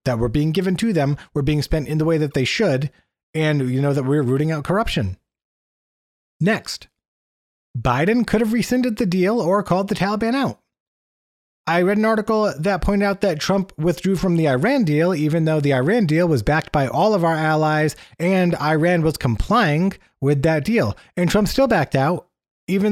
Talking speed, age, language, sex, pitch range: 195 wpm, 30-49, English, male, 145-190 Hz